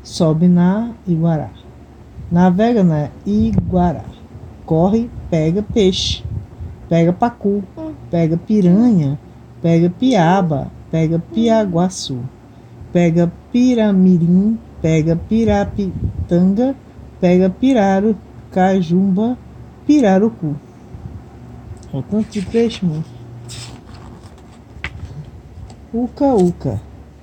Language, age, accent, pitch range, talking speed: Portuguese, 50-69, Brazilian, 160-220 Hz, 70 wpm